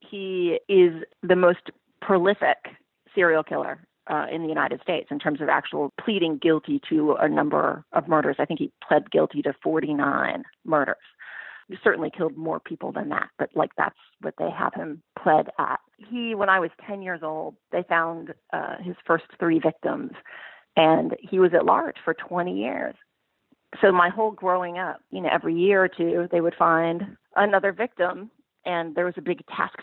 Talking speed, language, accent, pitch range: 185 wpm, English, American, 170-225 Hz